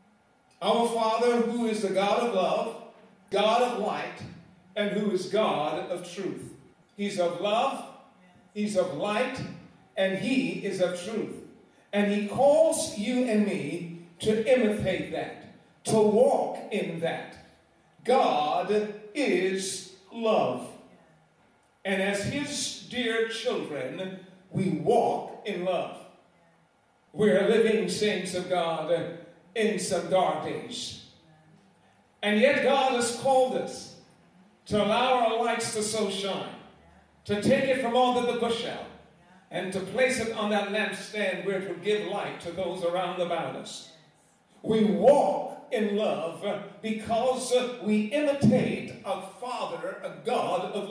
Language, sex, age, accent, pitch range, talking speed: English, male, 50-69, American, 190-235 Hz, 130 wpm